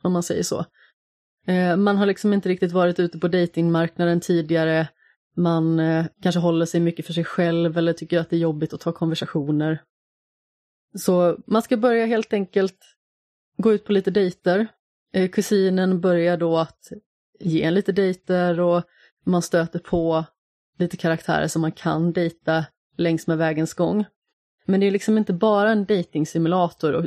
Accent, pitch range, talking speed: native, 165-195 Hz, 160 wpm